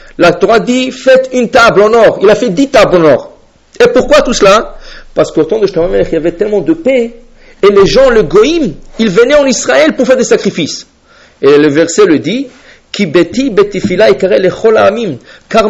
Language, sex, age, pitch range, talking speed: English, male, 50-69, 195-265 Hz, 190 wpm